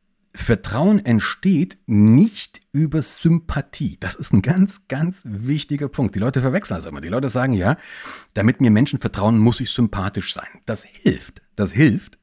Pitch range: 105-150 Hz